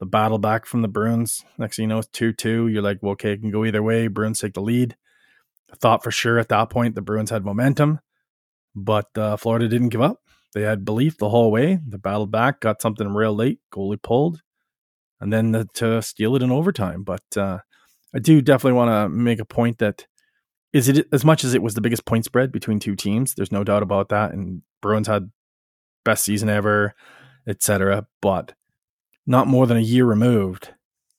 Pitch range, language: 105-125 Hz, English